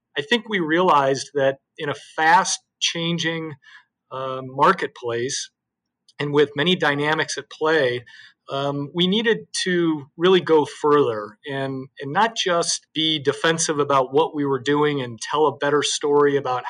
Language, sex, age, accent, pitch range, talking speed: English, male, 40-59, American, 130-155 Hz, 145 wpm